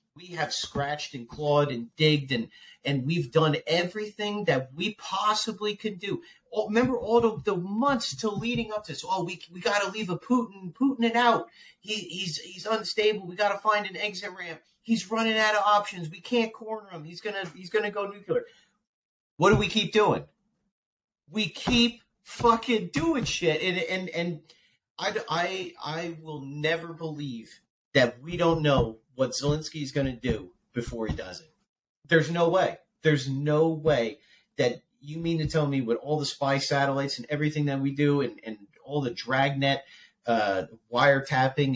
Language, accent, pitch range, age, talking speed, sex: English, American, 145-205 Hz, 40-59, 180 wpm, male